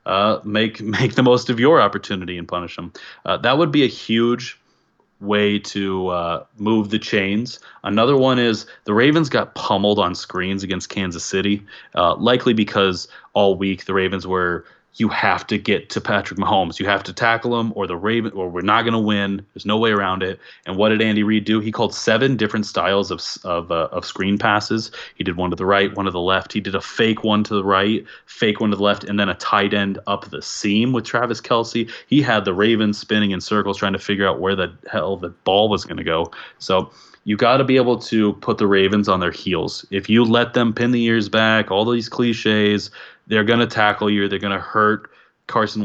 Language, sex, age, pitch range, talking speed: English, male, 30-49, 95-110 Hz, 225 wpm